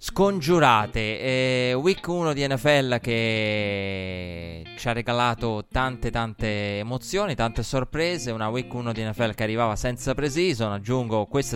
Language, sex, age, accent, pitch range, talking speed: Italian, male, 20-39, native, 100-120 Hz, 135 wpm